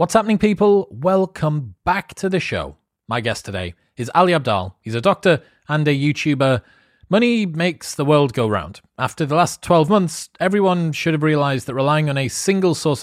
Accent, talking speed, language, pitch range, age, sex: British, 190 wpm, English, 120-165 Hz, 30-49, male